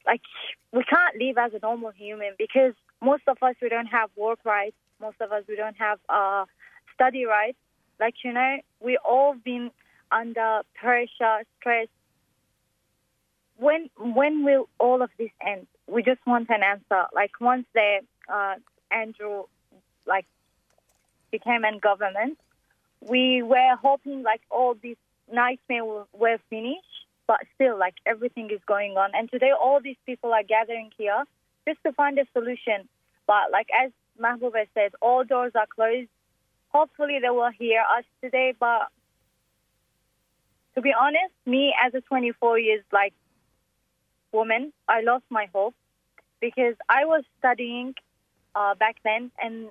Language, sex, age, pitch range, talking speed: English, female, 20-39, 215-255 Hz, 150 wpm